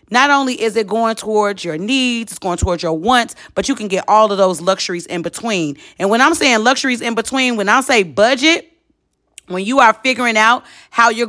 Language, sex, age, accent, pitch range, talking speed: English, female, 30-49, American, 175-250 Hz, 220 wpm